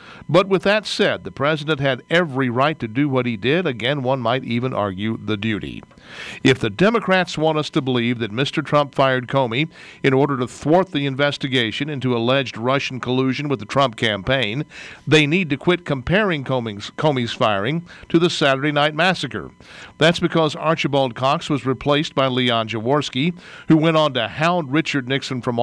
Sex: male